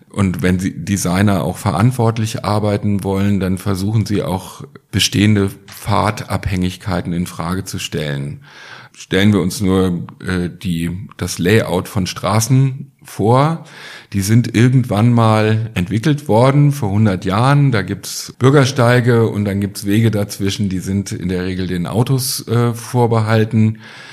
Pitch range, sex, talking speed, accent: 95-120 Hz, male, 140 wpm, German